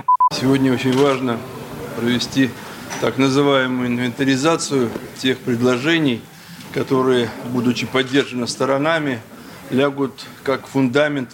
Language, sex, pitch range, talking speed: Russian, male, 130-145 Hz, 85 wpm